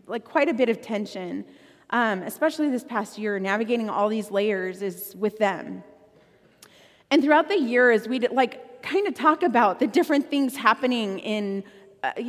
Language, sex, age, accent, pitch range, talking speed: English, female, 30-49, American, 205-300 Hz, 170 wpm